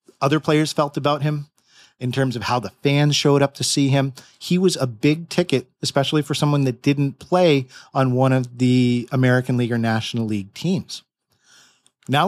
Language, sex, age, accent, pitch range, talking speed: English, male, 40-59, American, 125-155 Hz, 185 wpm